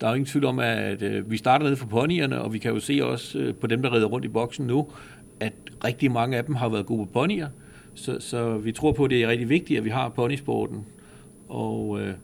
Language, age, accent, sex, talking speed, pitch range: Danish, 60-79, native, male, 250 wpm, 110-140 Hz